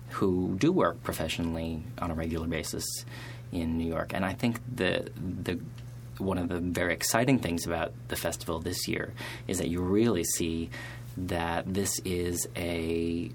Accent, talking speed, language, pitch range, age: American, 160 wpm, English, 85-120 Hz, 30-49